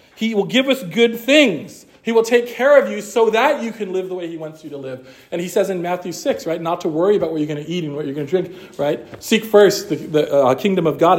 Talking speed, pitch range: 295 wpm, 155-220 Hz